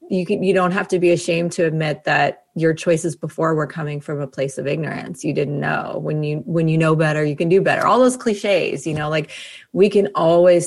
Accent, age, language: American, 30-49, English